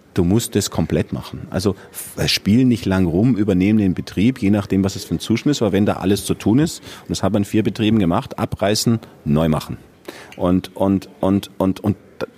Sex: male